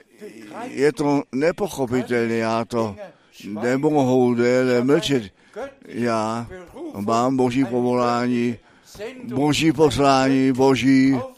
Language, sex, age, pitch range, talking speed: Czech, male, 50-69, 120-160 Hz, 80 wpm